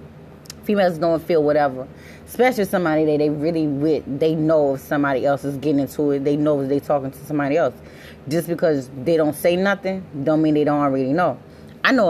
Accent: American